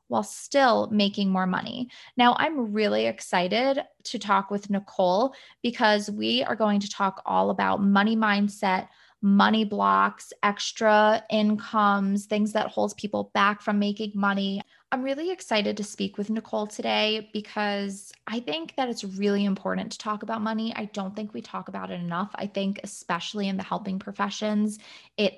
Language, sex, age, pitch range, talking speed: English, female, 20-39, 185-220 Hz, 165 wpm